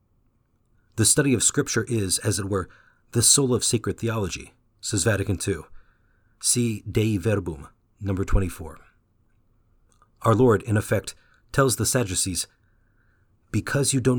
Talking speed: 130 wpm